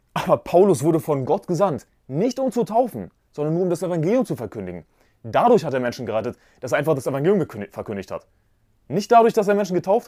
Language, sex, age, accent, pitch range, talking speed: German, male, 30-49, German, 125-170 Hz, 210 wpm